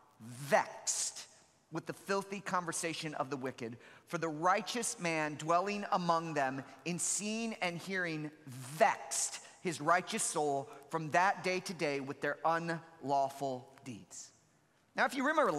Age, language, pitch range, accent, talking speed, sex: 40-59, English, 170-245 Hz, American, 140 wpm, male